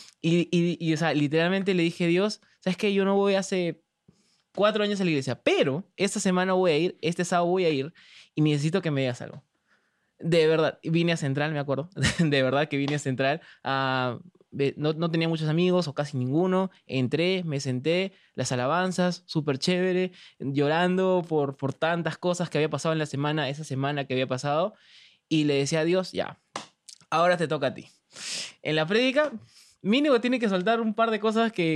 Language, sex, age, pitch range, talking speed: English, male, 20-39, 140-180 Hz, 200 wpm